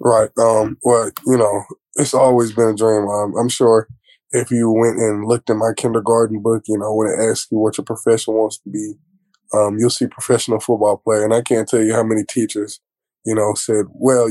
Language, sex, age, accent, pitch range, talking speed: English, male, 20-39, American, 105-125 Hz, 220 wpm